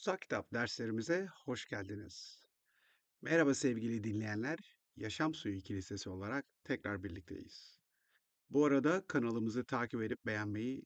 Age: 50-69